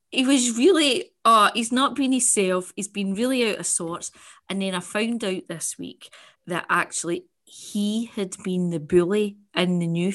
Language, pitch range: English, 190-250 Hz